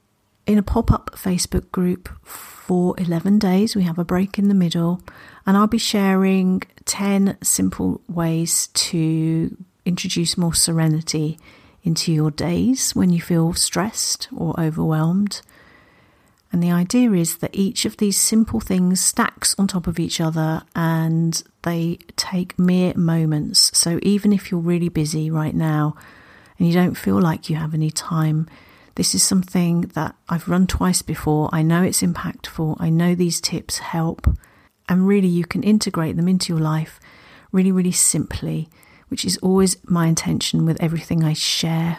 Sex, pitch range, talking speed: female, 160-190 Hz, 160 wpm